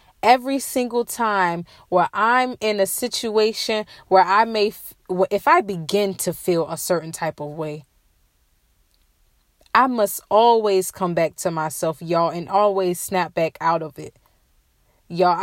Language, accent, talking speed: English, American, 145 wpm